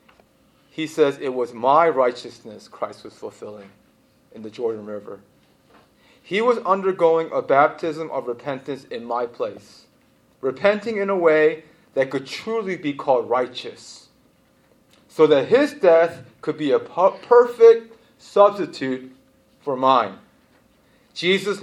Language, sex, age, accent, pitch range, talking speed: English, male, 30-49, American, 135-195 Hz, 125 wpm